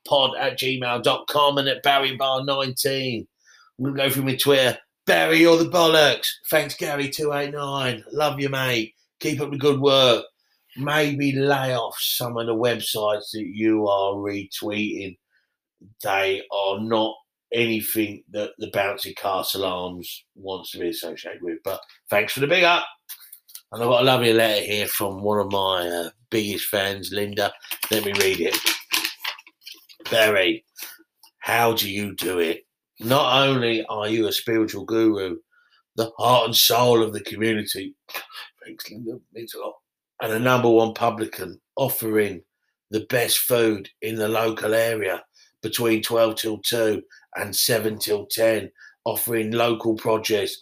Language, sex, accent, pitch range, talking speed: English, male, British, 110-140 Hz, 145 wpm